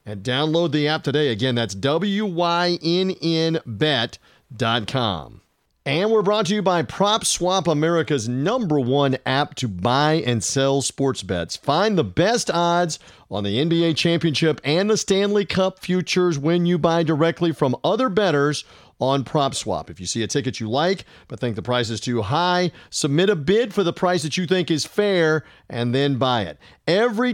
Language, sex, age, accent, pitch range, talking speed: English, male, 40-59, American, 125-175 Hz, 170 wpm